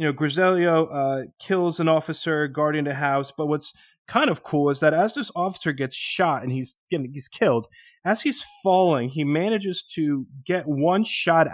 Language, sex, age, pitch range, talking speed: English, male, 30-49, 135-180 Hz, 185 wpm